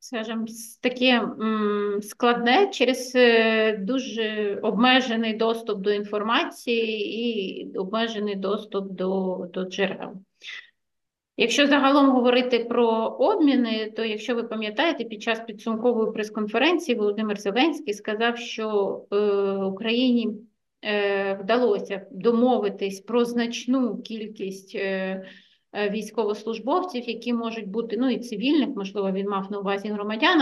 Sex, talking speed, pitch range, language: female, 105 wpm, 205-245 Hz, Ukrainian